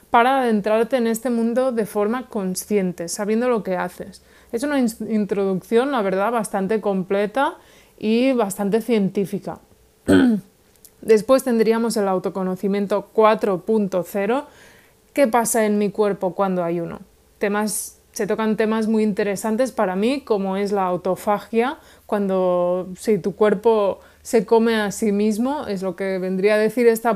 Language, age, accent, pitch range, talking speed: Spanish, 20-39, Spanish, 195-230 Hz, 140 wpm